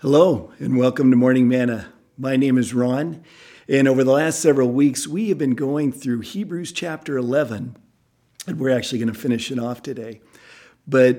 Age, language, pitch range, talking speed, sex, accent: 50-69, English, 120-150 Hz, 180 wpm, male, American